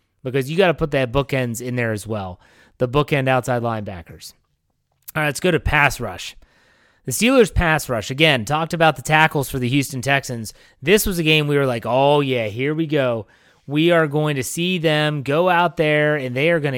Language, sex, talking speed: English, male, 215 wpm